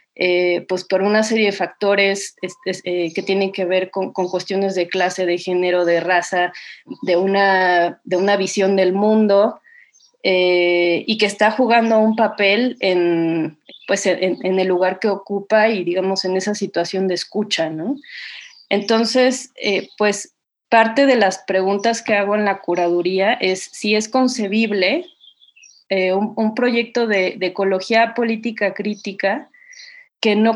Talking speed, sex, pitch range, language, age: 150 wpm, female, 185-225 Hz, Spanish, 20-39